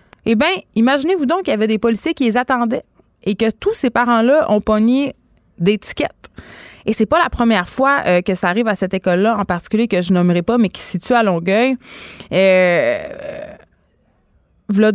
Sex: female